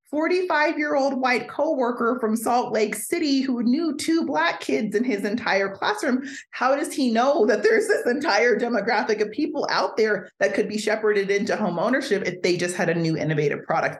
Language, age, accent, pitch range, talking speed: English, 30-49, American, 165-220 Hz, 195 wpm